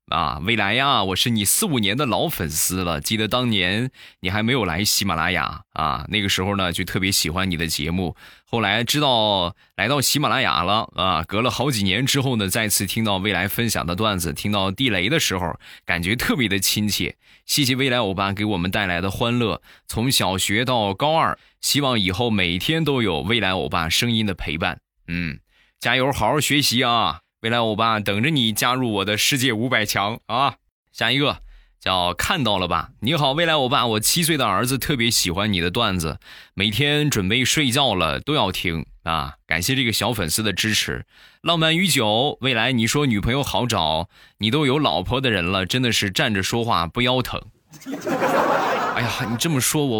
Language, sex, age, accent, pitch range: Chinese, male, 20-39, native, 95-130 Hz